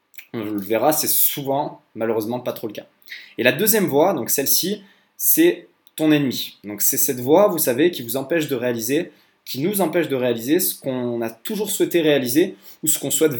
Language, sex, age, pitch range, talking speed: French, male, 20-39, 115-155 Hz, 200 wpm